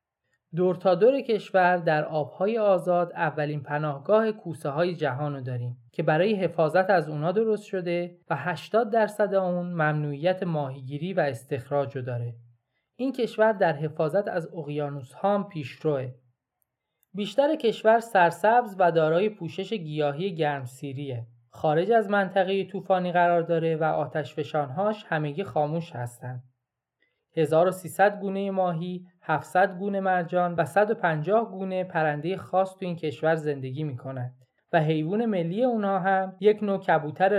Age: 20-39